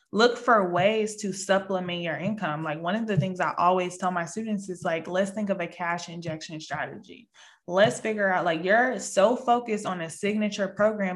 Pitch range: 180-210 Hz